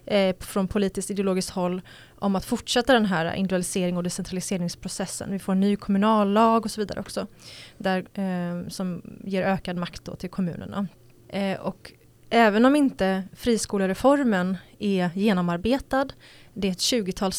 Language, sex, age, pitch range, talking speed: English, female, 20-39, 185-215 Hz, 150 wpm